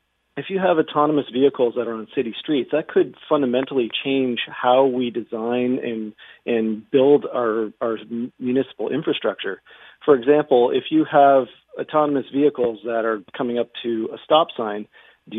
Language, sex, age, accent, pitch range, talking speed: English, male, 40-59, American, 110-135 Hz, 155 wpm